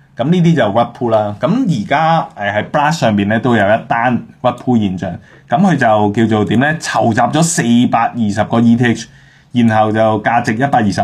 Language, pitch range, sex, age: Chinese, 100-135 Hz, male, 20-39